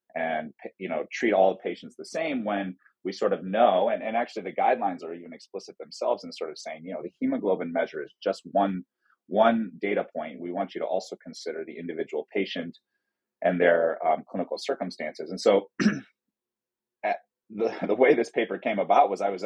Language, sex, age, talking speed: English, male, 30-49, 195 wpm